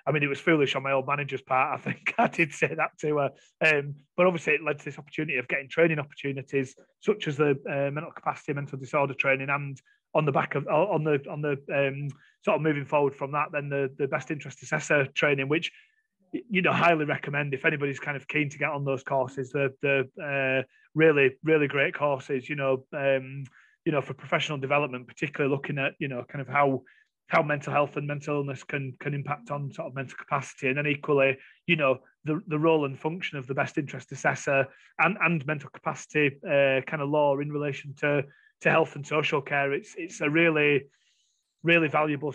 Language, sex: English, male